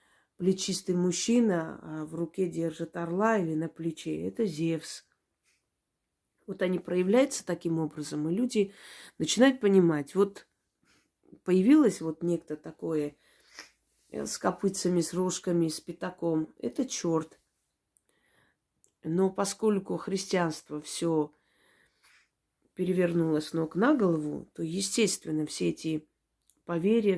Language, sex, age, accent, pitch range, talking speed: Russian, female, 30-49, native, 155-195 Hz, 110 wpm